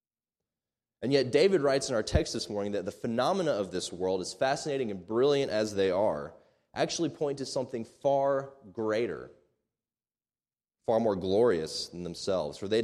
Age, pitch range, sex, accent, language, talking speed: 20-39, 95-130 Hz, male, American, English, 165 wpm